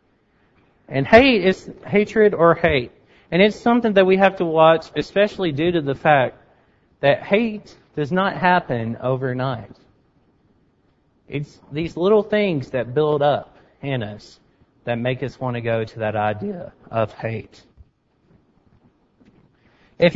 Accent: American